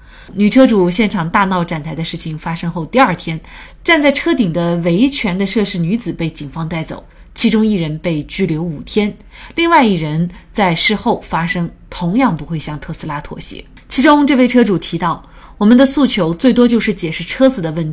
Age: 30-49